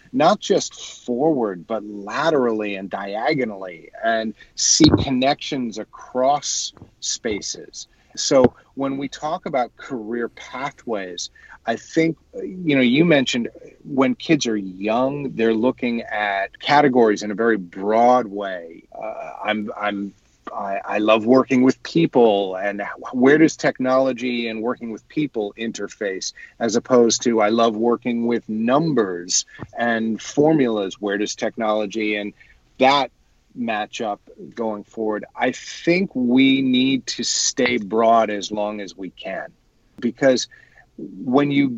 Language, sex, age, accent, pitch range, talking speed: English, male, 40-59, American, 105-130 Hz, 130 wpm